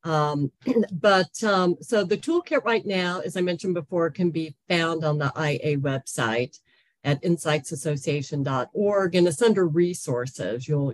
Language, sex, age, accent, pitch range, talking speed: English, female, 50-69, American, 150-195 Hz, 145 wpm